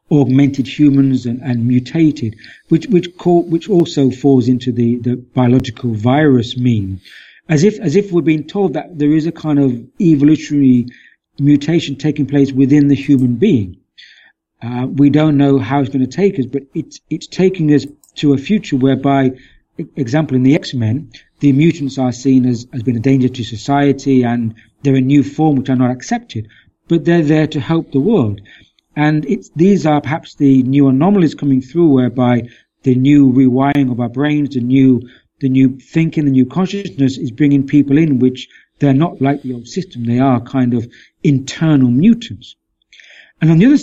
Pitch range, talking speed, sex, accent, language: 125-155 Hz, 185 wpm, male, British, English